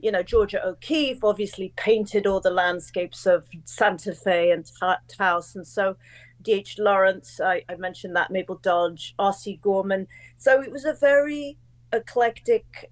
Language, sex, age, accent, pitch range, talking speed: English, female, 40-59, British, 185-225 Hz, 150 wpm